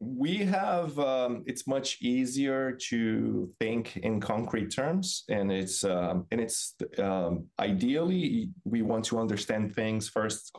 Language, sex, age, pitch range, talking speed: English, male, 20-39, 95-125 Hz, 135 wpm